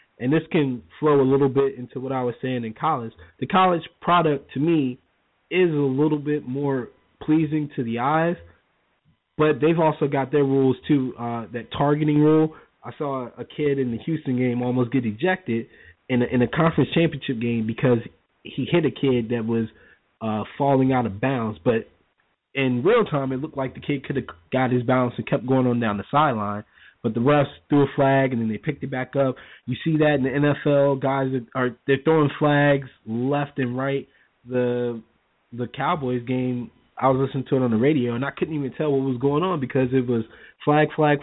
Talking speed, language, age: 210 wpm, English, 20-39